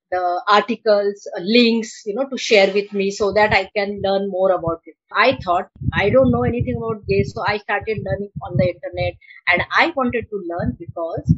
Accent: native